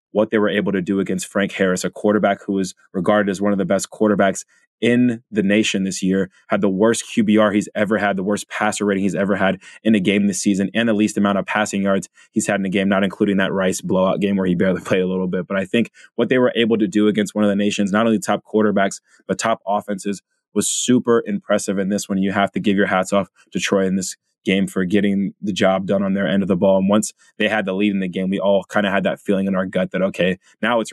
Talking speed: 275 wpm